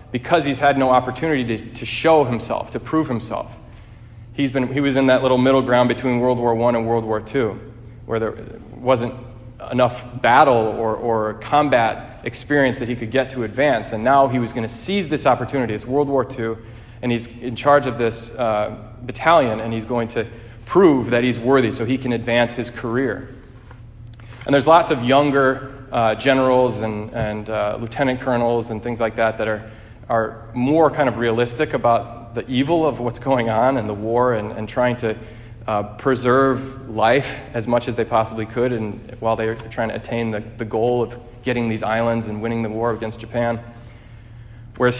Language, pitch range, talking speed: English, 115-130 Hz, 195 wpm